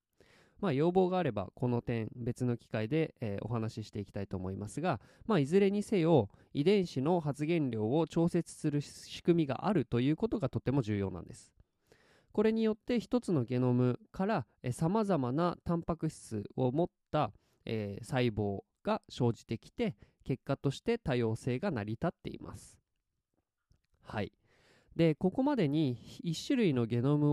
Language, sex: Japanese, male